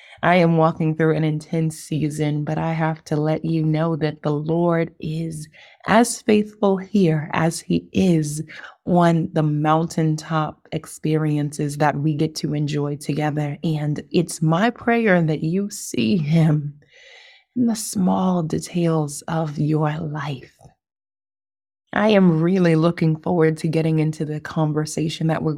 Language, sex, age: English, female, 20-39